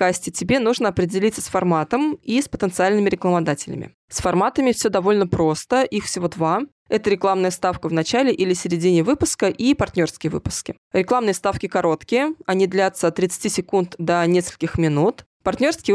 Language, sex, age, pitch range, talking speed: Russian, female, 20-39, 175-215 Hz, 155 wpm